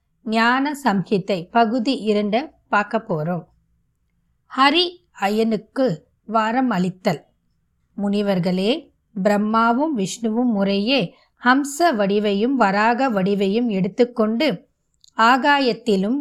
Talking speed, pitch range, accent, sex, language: 65 wpm, 210-260 Hz, native, female, Tamil